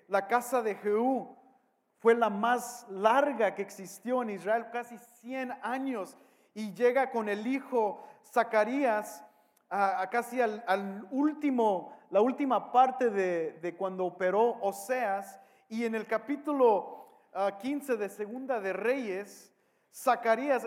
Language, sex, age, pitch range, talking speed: English, male, 40-59, 195-255 Hz, 135 wpm